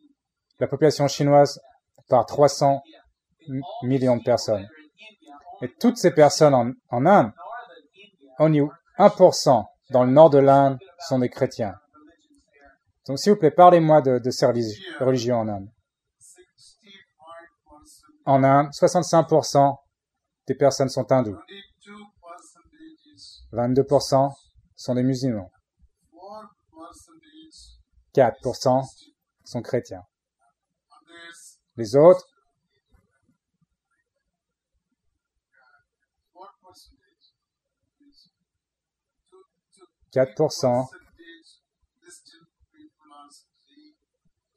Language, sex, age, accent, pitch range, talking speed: English, male, 30-49, French, 125-175 Hz, 75 wpm